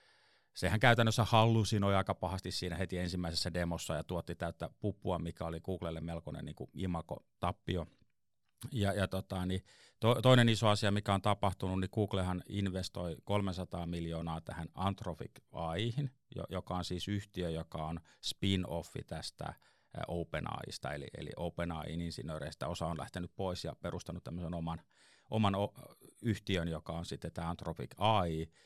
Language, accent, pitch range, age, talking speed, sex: Finnish, native, 85-100 Hz, 30-49, 140 wpm, male